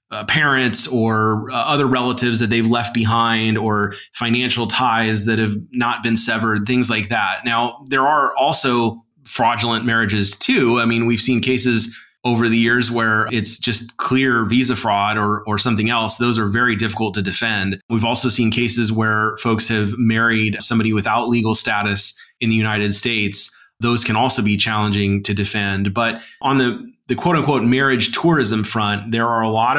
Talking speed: 175 wpm